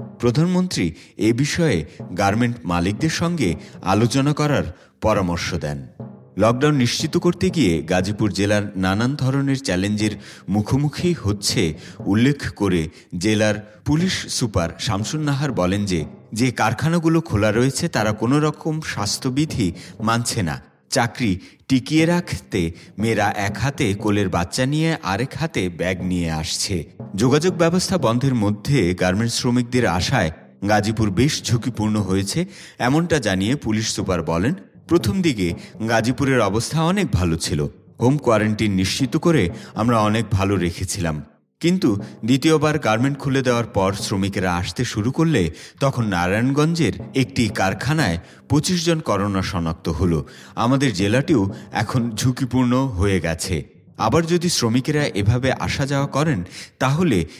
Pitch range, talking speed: 95-140 Hz, 115 wpm